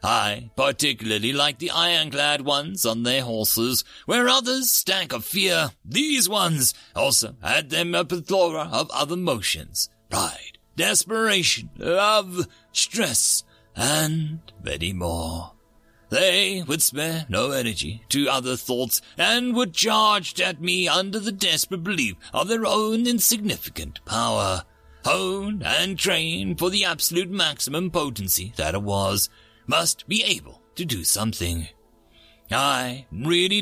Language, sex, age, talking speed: English, male, 40-59, 130 wpm